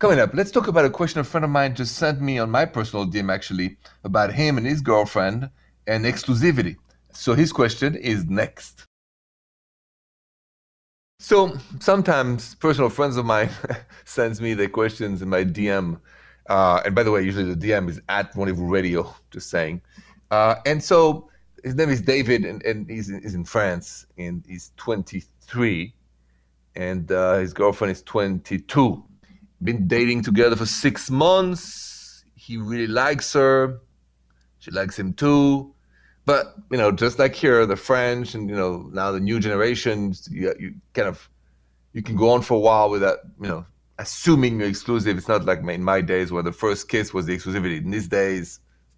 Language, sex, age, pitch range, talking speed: English, male, 40-59, 90-135 Hz, 175 wpm